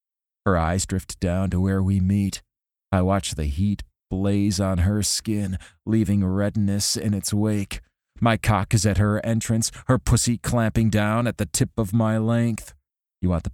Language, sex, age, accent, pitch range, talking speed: English, male, 40-59, American, 95-115 Hz, 175 wpm